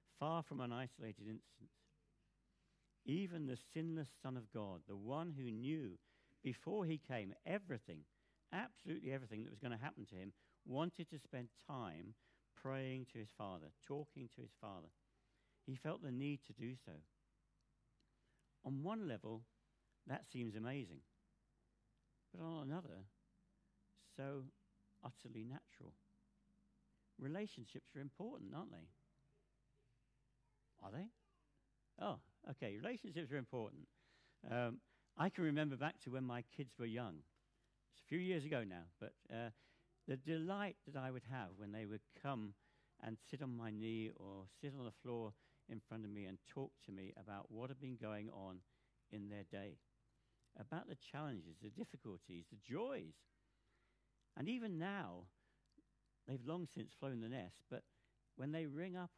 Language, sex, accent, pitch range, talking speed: English, male, British, 110-150 Hz, 150 wpm